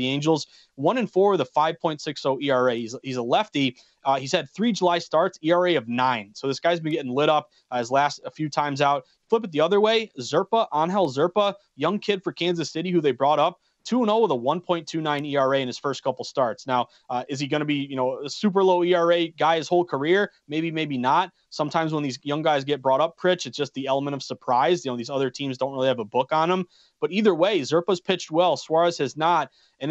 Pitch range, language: 140-180 Hz, English